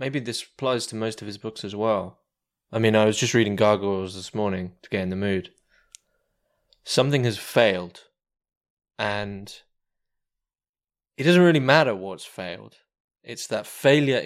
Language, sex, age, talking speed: English, male, 20-39, 155 wpm